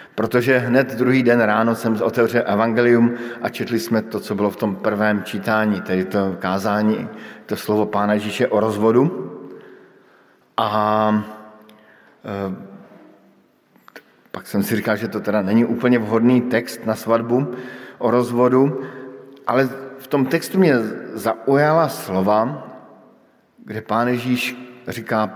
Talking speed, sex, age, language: 130 wpm, male, 50-69, Slovak